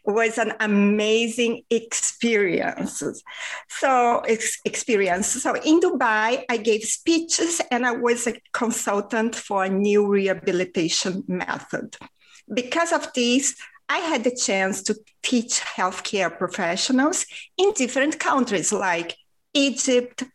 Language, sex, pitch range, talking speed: English, female, 205-275 Hz, 110 wpm